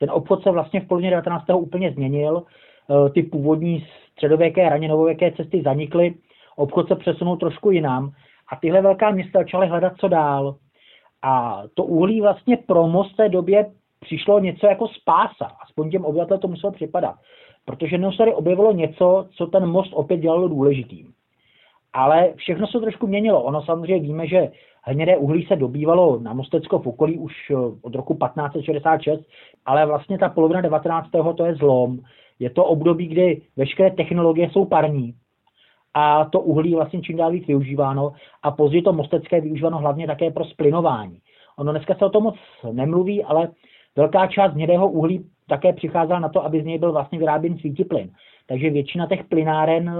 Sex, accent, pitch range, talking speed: male, native, 150-185 Hz, 170 wpm